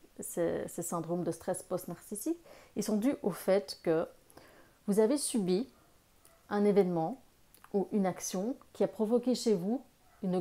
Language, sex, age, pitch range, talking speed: French, female, 30-49, 190-235 Hz, 150 wpm